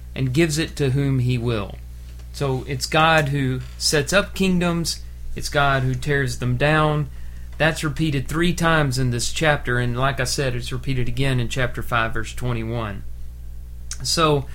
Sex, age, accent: male, 40-59, American